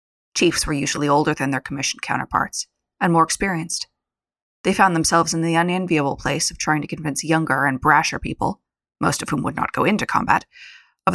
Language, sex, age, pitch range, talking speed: English, female, 20-39, 150-195 Hz, 190 wpm